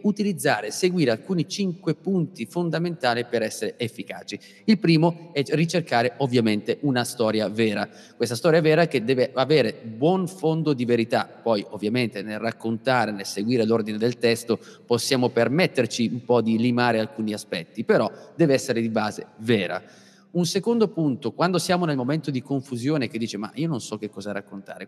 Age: 30-49